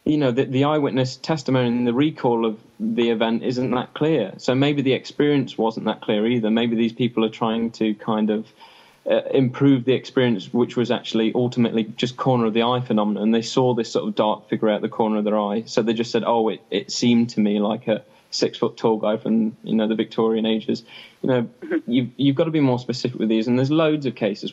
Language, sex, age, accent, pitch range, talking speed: English, male, 20-39, British, 110-125 Hz, 235 wpm